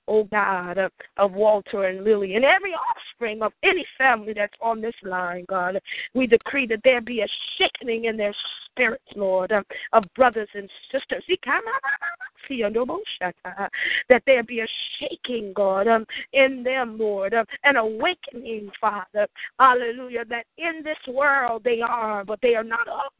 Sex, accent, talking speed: female, American, 155 wpm